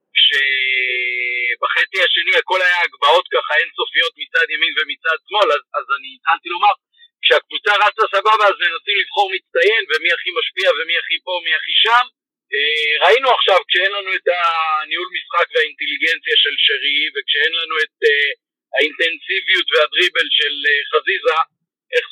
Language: Hebrew